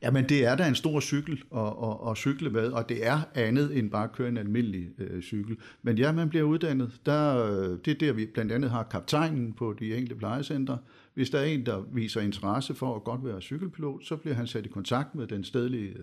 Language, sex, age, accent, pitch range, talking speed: Danish, male, 60-79, native, 105-145 Hz, 245 wpm